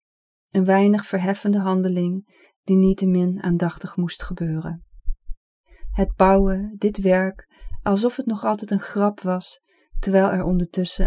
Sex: female